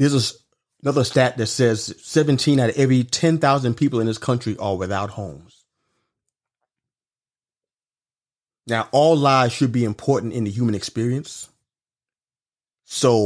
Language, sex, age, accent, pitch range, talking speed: English, male, 30-49, American, 110-150 Hz, 135 wpm